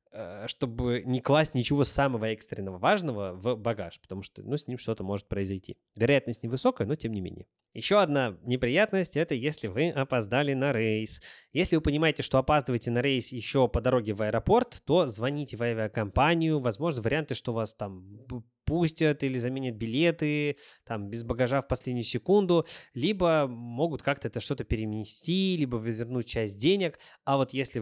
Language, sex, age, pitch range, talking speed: Russian, male, 20-39, 110-140 Hz, 165 wpm